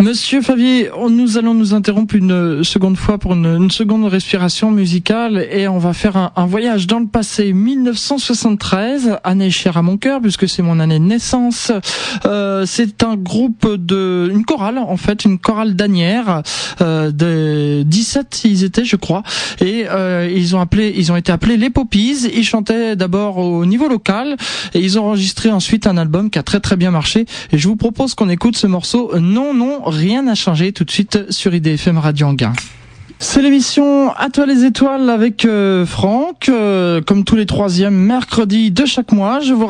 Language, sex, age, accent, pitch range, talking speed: French, male, 20-39, French, 185-235 Hz, 190 wpm